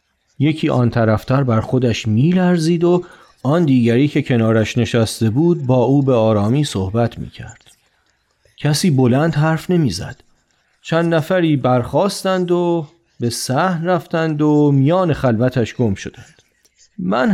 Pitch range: 120-175 Hz